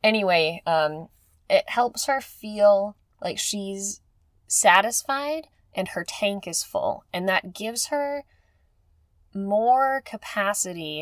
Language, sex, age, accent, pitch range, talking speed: English, female, 10-29, American, 150-200 Hz, 110 wpm